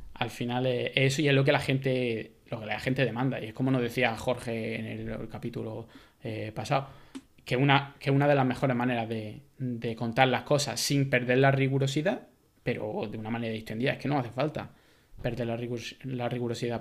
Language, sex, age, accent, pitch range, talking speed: Spanish, male, 20-39, Spanish, 115-135 Hz, 190 wpm